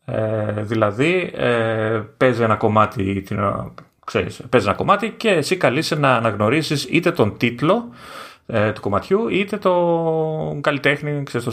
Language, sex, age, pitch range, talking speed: Greek, male, 30-49, 110-145 Hz, 140 wpm